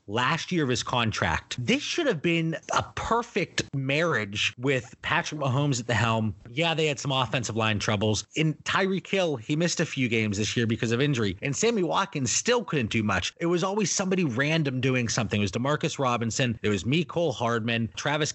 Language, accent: English, American